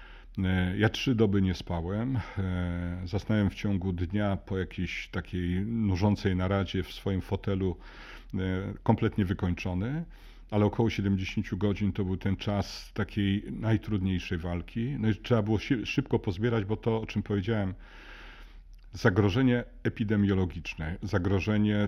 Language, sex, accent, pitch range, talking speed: Polish, male, native, 95-105 Hz, 125 wpm